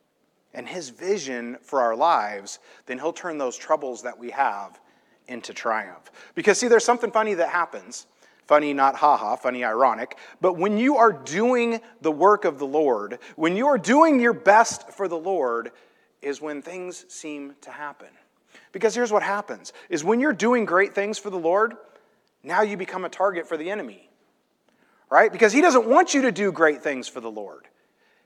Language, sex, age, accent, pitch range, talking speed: English, male, 30-49, American, 150-230 Hz, 185 wpm